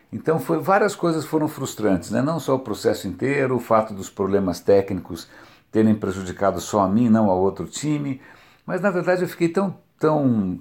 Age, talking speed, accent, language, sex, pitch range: 60-79, 180 wpm, Brazilian, Portuguese, male, 105-135 Hz